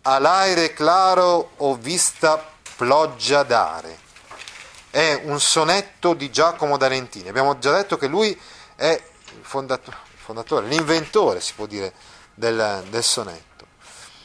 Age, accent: 30-49, native